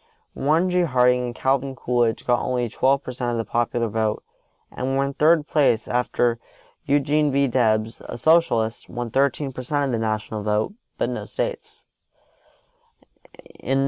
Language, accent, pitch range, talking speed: English, American, 120-150 Hz, 145 wpm